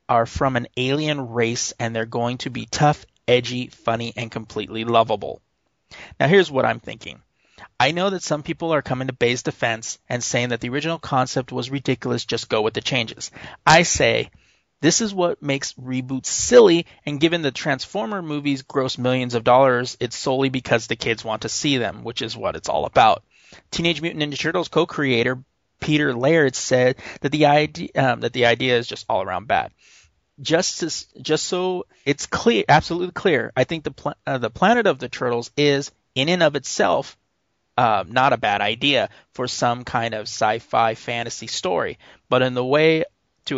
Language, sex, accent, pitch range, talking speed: English, male, American, 120-150 Hz, 180 wpm